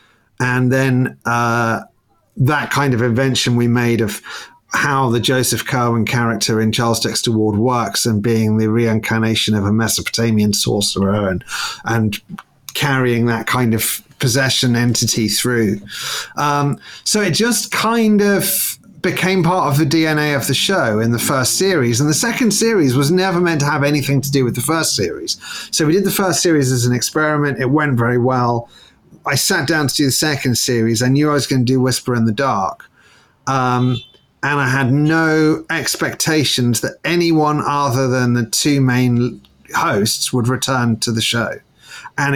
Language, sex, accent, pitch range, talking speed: English, male, British, 115-150 Hz, 175 wpm